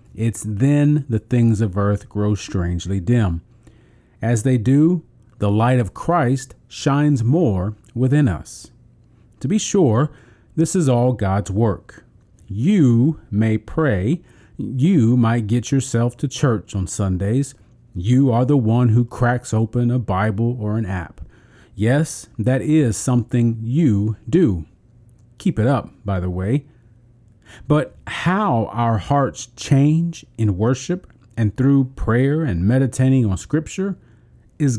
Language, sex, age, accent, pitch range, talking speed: English, male, 40-59, American, 110-130 Hz, 135 wpm